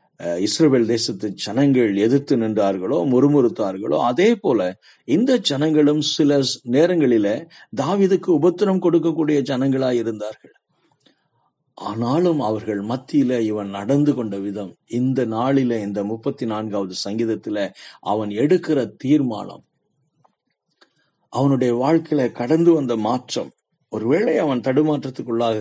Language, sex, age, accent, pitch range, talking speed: Tamil, male, 50-69, native, 105-140 Hz, 95 wpm